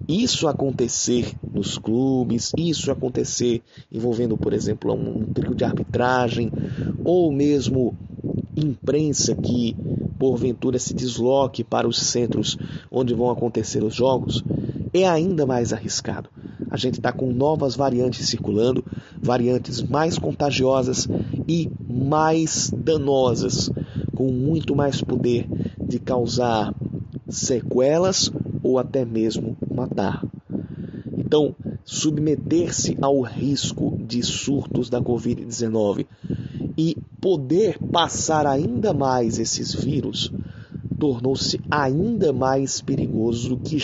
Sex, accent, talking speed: male, Brazilian, 105 wpm